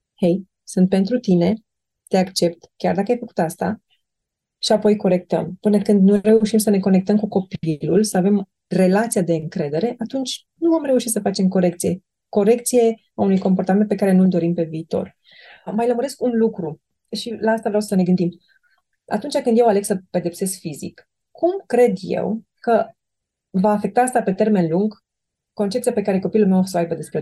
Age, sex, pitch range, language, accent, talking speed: 30-49, female, 175-215 Hz, Romanian, native, 185 wpm